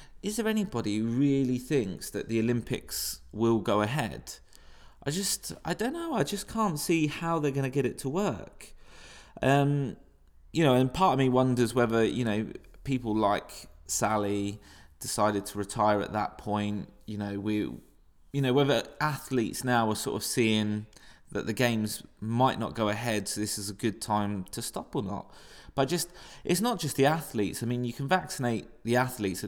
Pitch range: 105-135 Hz